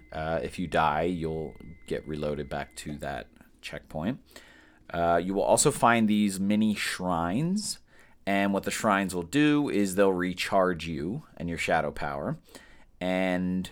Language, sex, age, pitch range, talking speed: English, male, 30-49, 80-105 Hz, 150 wpm